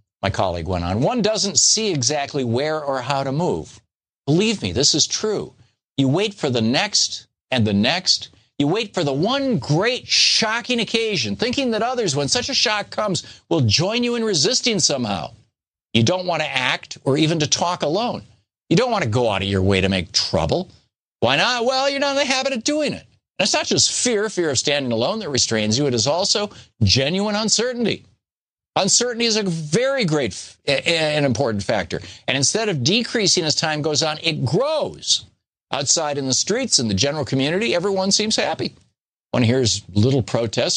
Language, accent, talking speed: English, American, 195 wpm